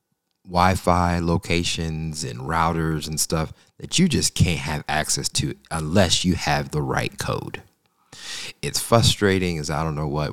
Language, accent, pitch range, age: English, American, 80-100 Hz, 30-49